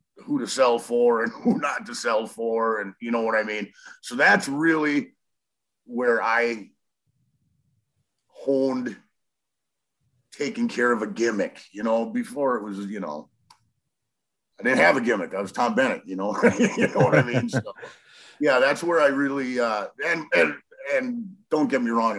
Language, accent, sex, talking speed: English, American, male, 175 wpm